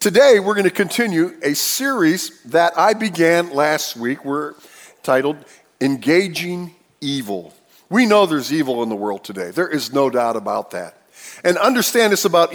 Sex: male